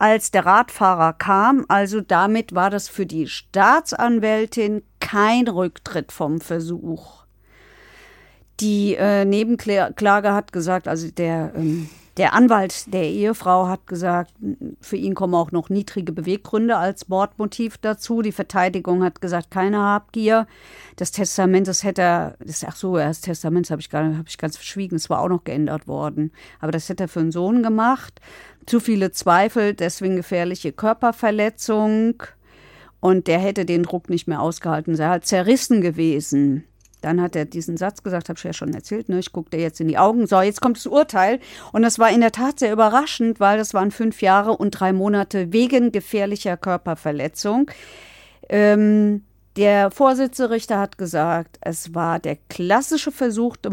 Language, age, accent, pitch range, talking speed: German, 50-69, German, 170-220 Hz, 165 wpm